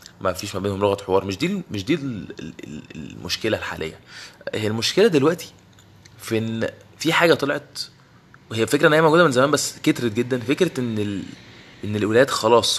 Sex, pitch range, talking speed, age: male, 100-130 Hz, 165 wpm, 20-39